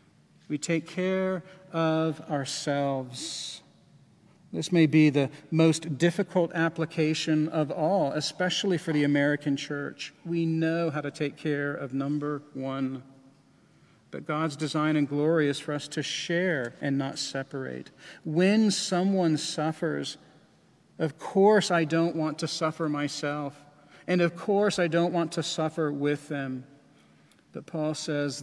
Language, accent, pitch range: English, American, 140-165 Hz